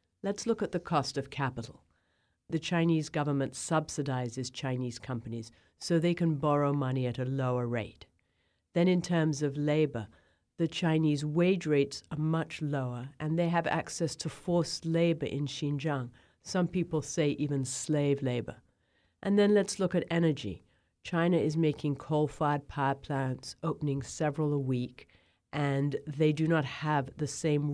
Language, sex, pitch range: English, female, 130-155 Hz